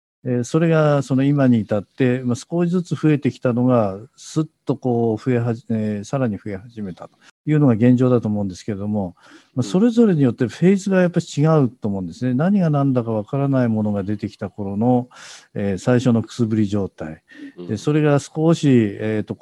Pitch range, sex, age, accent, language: 105-140 Hz, male, 50-69, native, Japanese